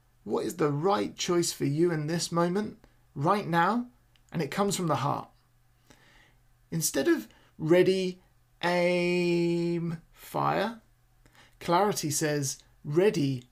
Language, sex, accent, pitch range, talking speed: English, male, British, 135-180 Hz, 115 wpm